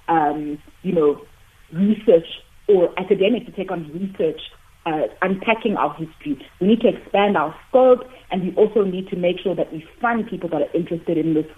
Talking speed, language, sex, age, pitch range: 185 wpm, English, female, 30-49, 165-205 Hz